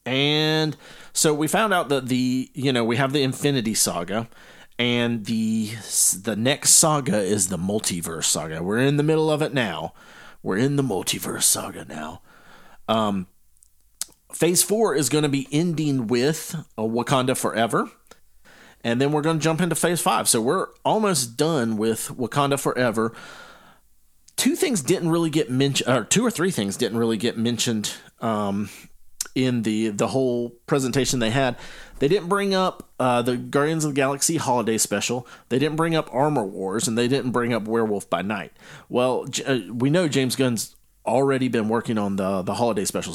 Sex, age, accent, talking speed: male, 40-59, American, 175 wpm